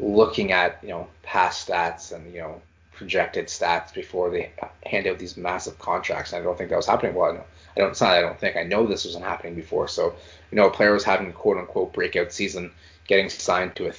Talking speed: 240 wpm